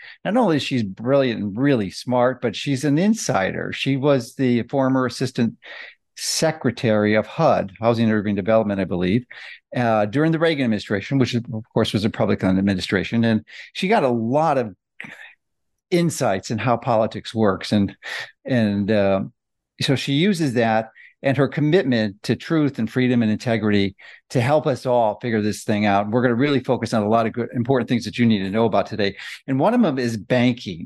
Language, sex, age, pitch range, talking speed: English, male, 50-69, 110-135 Hz, 190 wpm